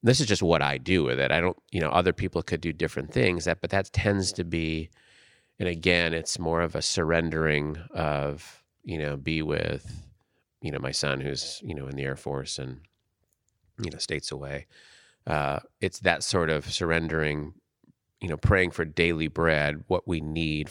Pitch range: 75-90 Hz